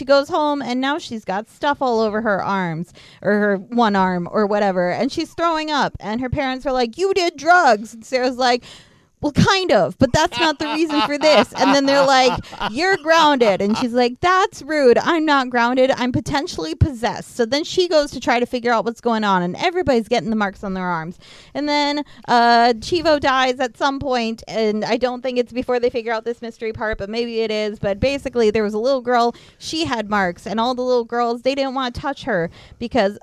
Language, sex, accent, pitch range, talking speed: English, female, American, 215-265 Hz, 230 wpm